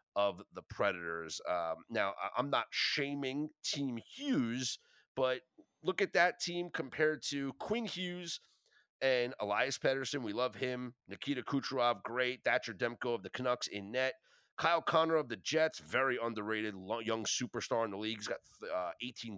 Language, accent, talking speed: English, American, 160 wpm